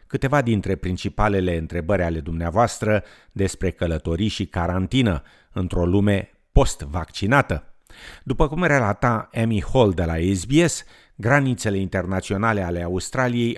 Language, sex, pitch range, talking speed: Romanian, male, 90-115 Hz, 110 wpm